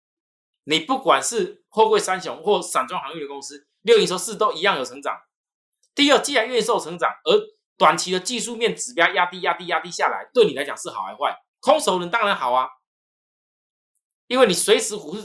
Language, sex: Chinese, male